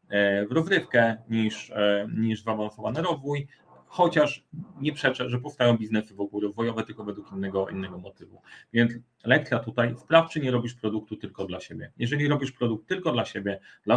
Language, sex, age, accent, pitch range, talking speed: Polish, male, 30-49, native, 105-130 Hz, 165 wpm